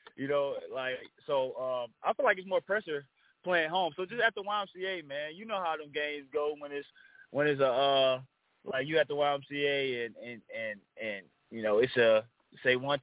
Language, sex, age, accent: English, male, 20-39, American